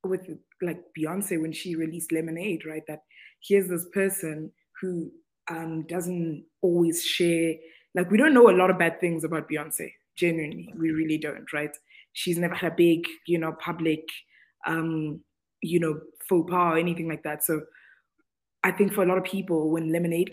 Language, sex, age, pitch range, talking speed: English, female, 20-39, 160-195 Hz, 175 wpm